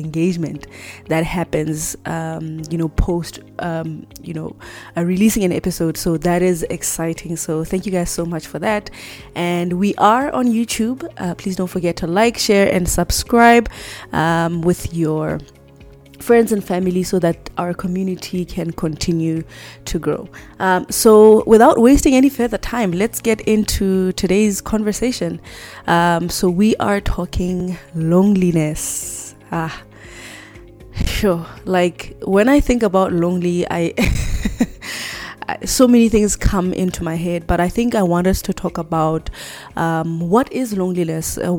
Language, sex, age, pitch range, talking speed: English, female, 20-39, 165-200 Hz, 145 wpm